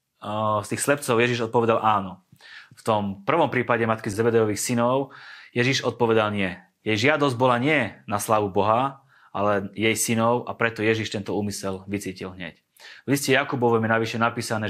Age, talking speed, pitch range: 30-49, 160 wpm, 105-125 Hz